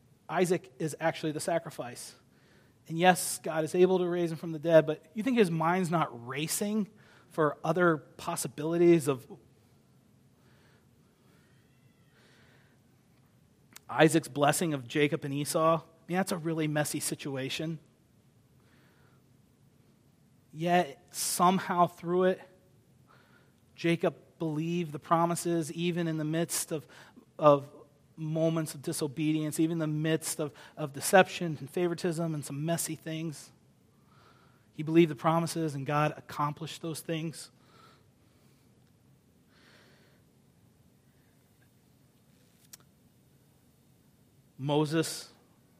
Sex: male